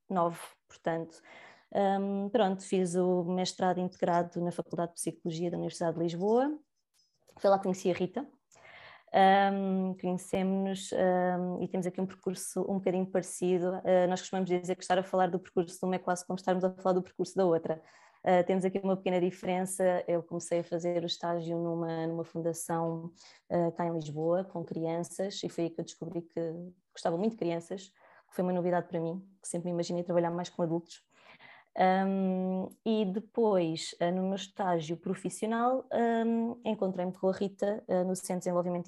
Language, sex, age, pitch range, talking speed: Portuguese, female, 20-39, 170-190 Hz, 180 wpm